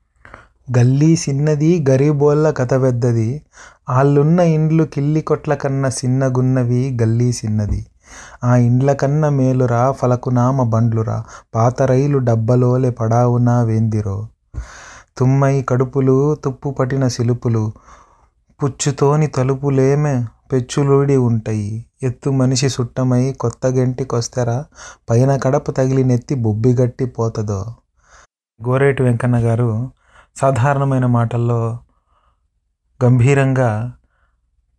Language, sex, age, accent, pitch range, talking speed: English, male, 30-49, Indian, 115-135 Hz, 70 wpm